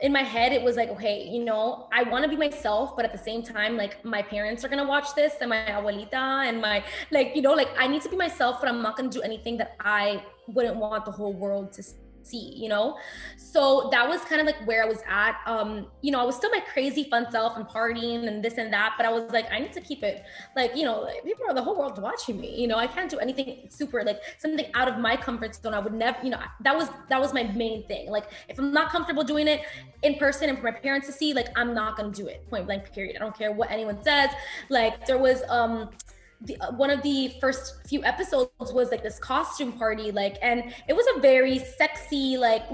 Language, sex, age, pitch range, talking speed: English, female, 20-39, 225-290 Hz, 260 wpm